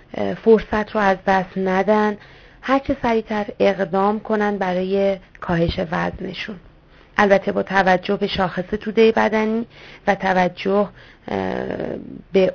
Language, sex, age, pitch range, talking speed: Persian, female, 30-49, 185-210 Hz, 110 wpm